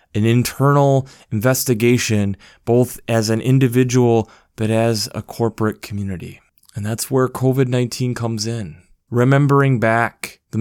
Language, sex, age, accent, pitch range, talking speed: English, male, 20-39, American, 105-120 Hz, 120 wpm